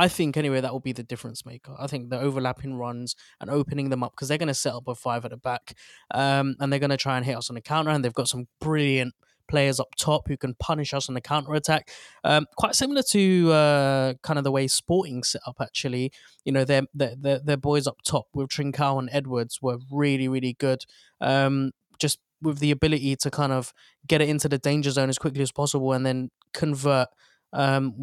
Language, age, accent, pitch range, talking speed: English, 20-39, British, 135-150 Hz, 235 wpm